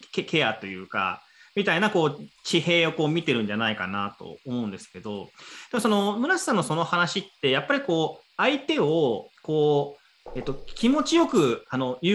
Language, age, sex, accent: Japanese, 30-49, male, native